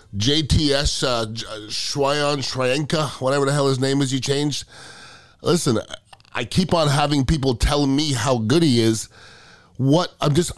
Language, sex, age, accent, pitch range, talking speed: English, male, 30-49, American, 135-180 Hz, 155 wpm